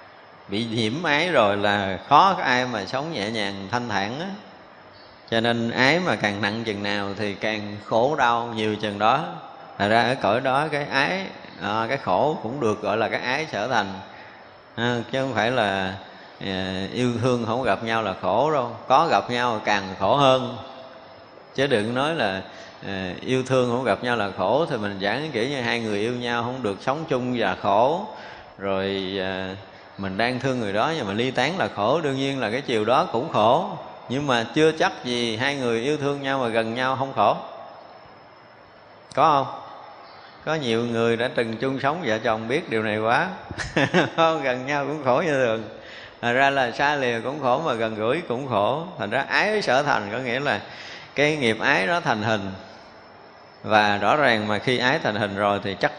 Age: 20-39